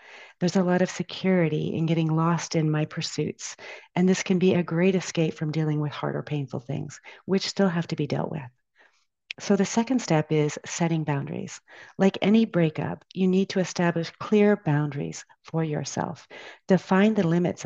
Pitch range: 160-190 Hz